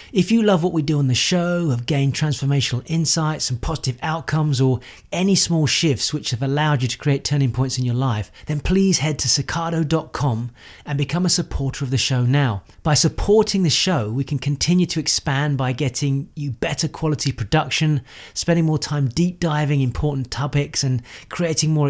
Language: English